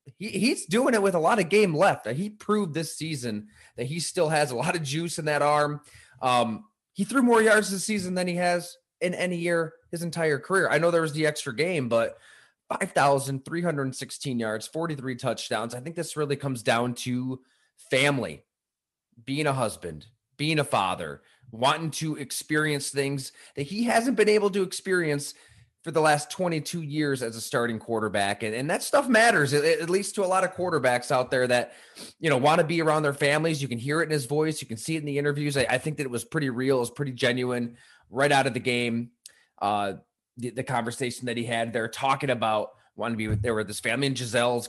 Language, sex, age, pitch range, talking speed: English, male, 30-49, 115-165 Hz, 215 wpm